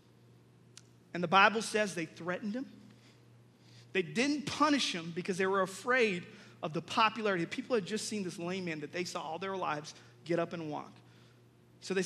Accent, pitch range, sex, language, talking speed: American, 165-235 Hz, male, English, 185 wpm